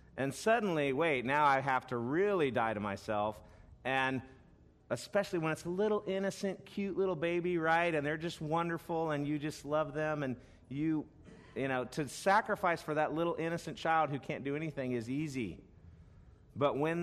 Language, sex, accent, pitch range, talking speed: English, male, American, 115-150 Hz, 175 wpm